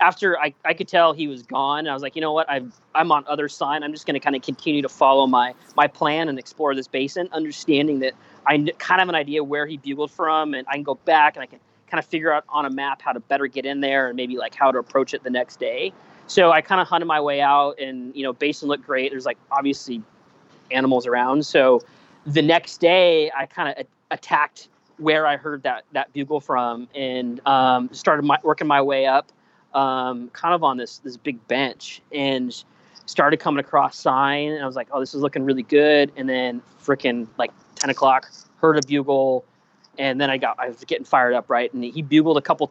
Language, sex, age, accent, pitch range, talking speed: English, male, 20-39, American, 135-155 Hz, 240 wpm